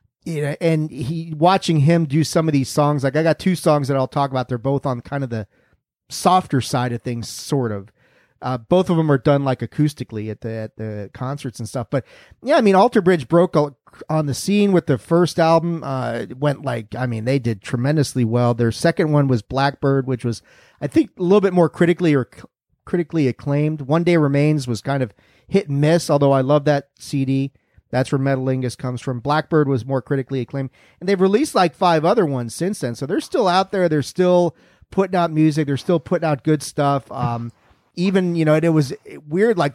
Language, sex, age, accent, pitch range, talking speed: English, male, 40-59, American, 130-170 Hz, 220 wpm